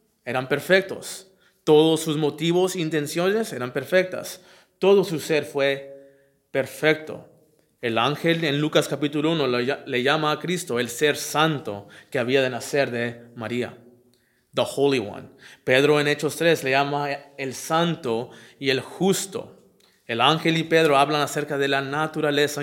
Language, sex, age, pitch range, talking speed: English, male, 30-49, 125-155 Hz, 150 wpm